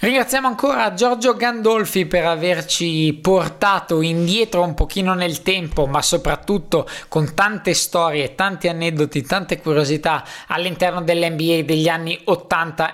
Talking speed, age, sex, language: 120 wpm, 20-39, male, Italian